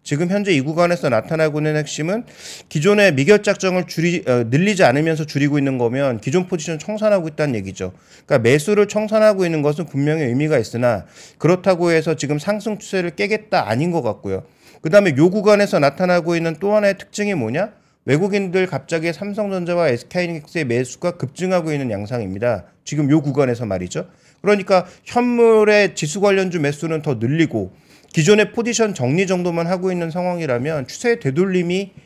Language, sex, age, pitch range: Korean, male, 40-59, 140-185 Hz